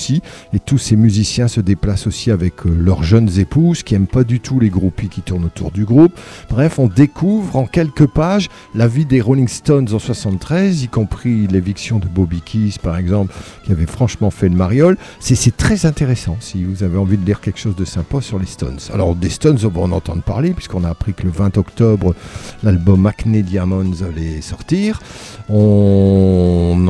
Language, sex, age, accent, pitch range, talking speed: English, male, 50-69, French, 95-130 Hz, 195 wpm